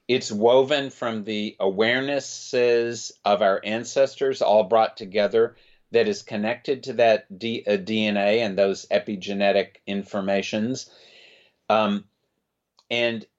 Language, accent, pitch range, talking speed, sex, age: English, American, 110-130 Hz, 110 wpm, male, 50-69